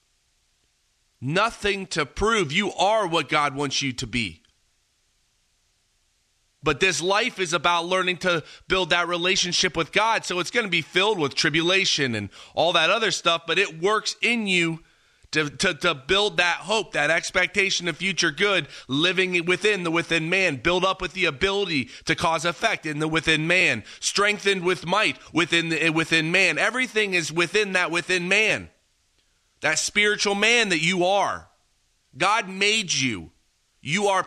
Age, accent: 30-49, American